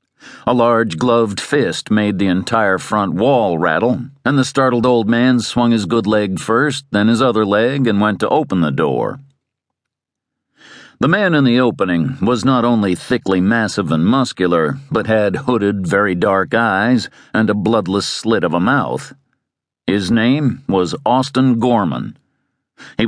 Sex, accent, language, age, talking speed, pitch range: male, American, English, 50-69, 160 wpm, 105-125 Hz